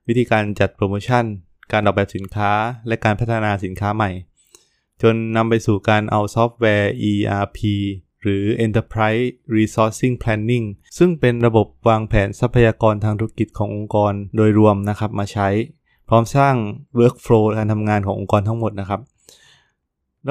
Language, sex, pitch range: Thai, male, 100-120 Hz